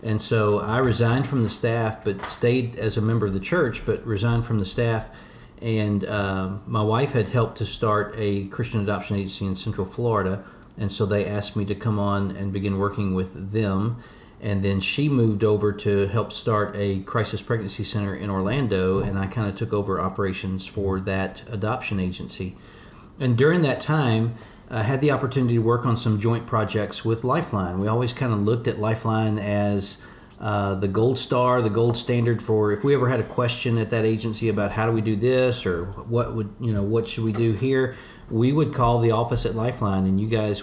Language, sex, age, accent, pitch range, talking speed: English, male, 40-59, American, 105-120 Hz, 205 wpm